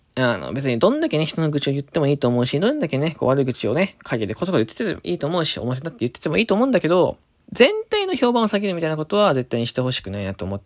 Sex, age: male, 20-39